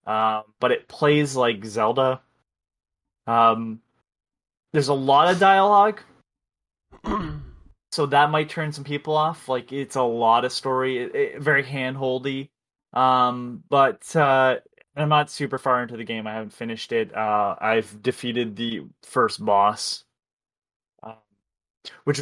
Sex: male